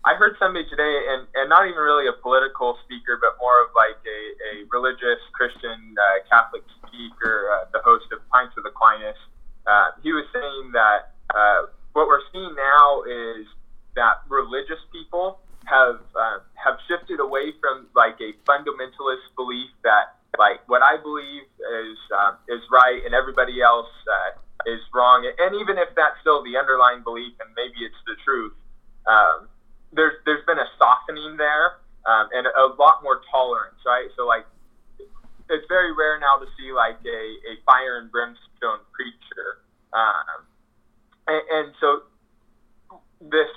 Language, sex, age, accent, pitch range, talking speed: English, male, 20-39, American, 120-160 Hz, 160 wpm